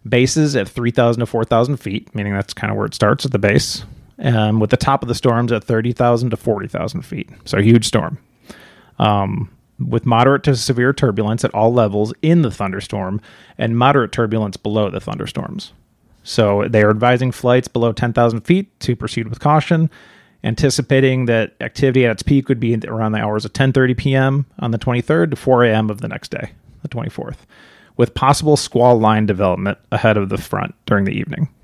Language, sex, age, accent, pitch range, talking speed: English, male, 30-49, American, 110-130 Hz, 190 wpm